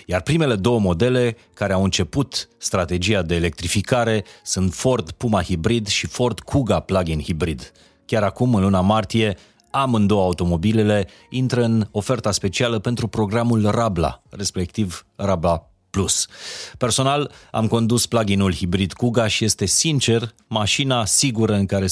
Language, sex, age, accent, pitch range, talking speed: Romanian, male, 30-49, native, 90-115 Hz, 135 wpm